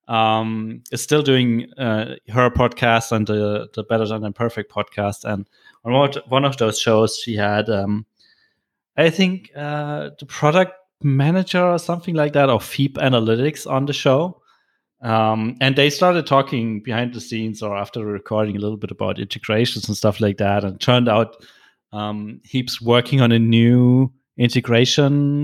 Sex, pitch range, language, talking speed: male, 110-130 Hz, English, 165 wpm